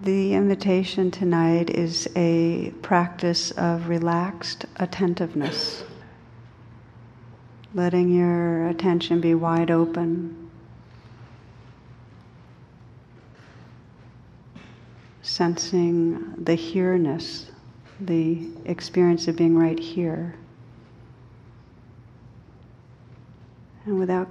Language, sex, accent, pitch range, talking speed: English, female, American, 120-170 Hz, 65 wpm